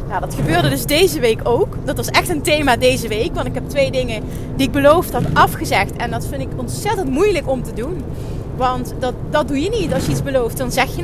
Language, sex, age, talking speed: Dutch, female, 30-49, 250 wpm